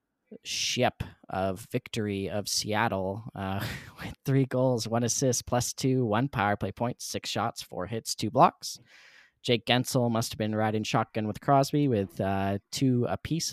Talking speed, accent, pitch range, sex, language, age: 160 wpm, American, 100-125 Hz, male, English, 10-29